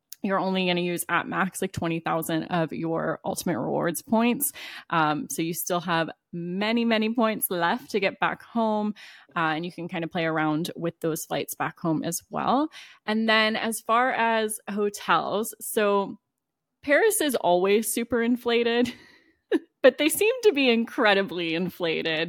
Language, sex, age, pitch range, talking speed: English, female, 20-39, 170-230 Hz, 165 wpm